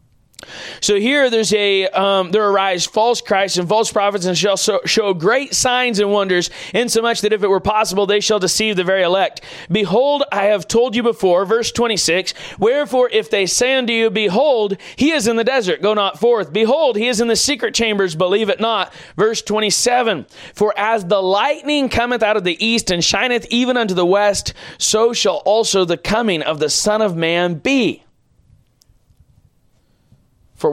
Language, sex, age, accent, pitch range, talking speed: English, male, 30-49, American, 185-230 Hz, 185 wpm